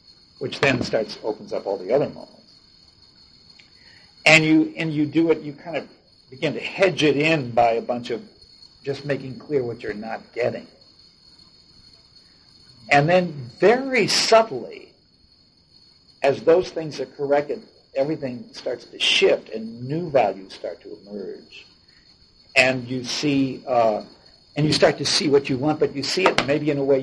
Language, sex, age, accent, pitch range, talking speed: English, male, 60-79, American, 120-155 Hz, 160 wpm